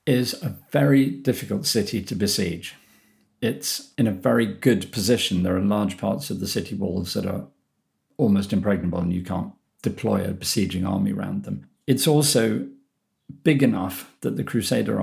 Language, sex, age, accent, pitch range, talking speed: English, male, 50-69, British, 100-135 Hz, 165 wpm